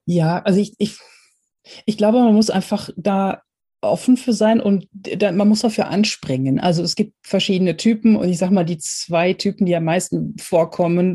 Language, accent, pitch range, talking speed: German, German, 155-195 Hz, 190 wpm